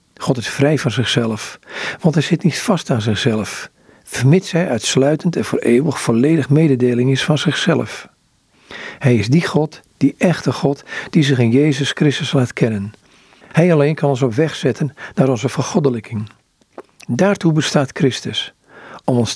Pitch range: 120-155 Hz